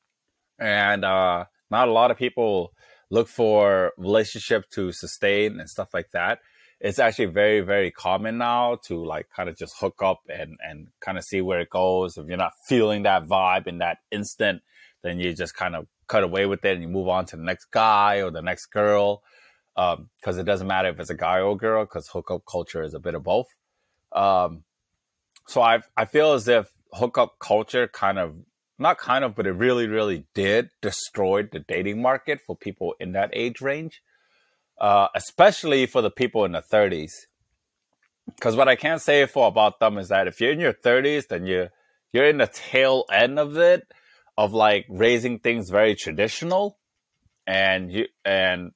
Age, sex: 20-39, male